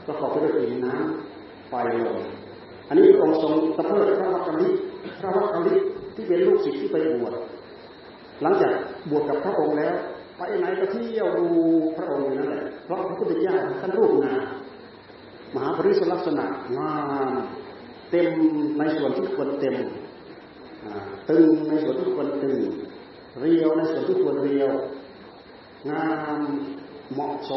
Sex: male